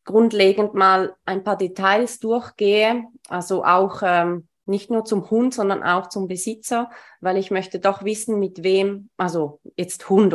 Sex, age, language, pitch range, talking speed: female, 20-39, German, 185-220 Hz, 155 wpm